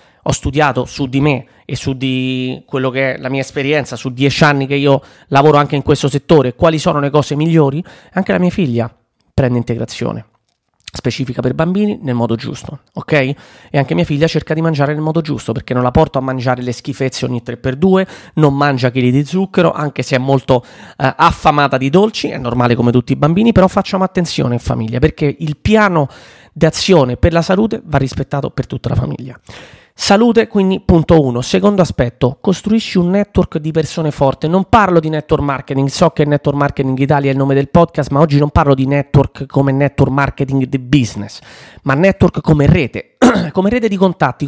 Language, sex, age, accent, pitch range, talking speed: Italian, male, 30-49, native, 135-170 Hz, 200 wpm